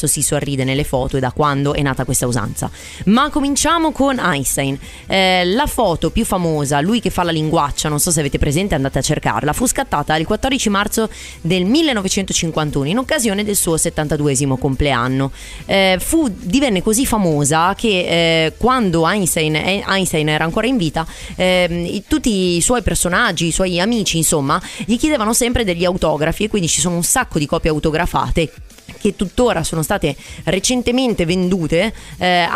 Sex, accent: female, native